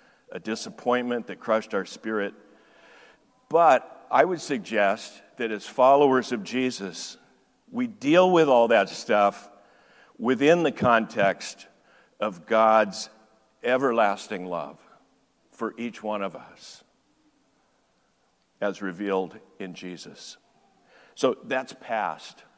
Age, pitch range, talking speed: 60-79, 110-135 Hz, 105 wpm